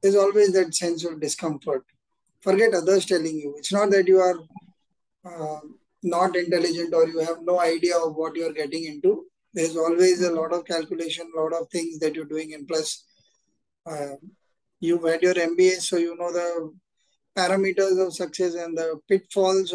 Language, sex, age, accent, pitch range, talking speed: English, male, 20-39, Indian, 160-190 Hz, 175 wpm